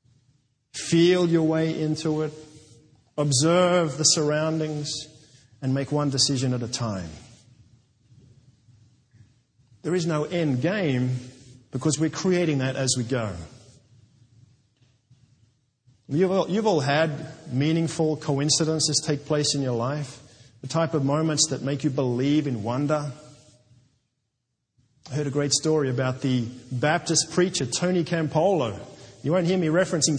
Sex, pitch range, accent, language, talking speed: male, 125-165 Hz, Australian, English, 125 wpm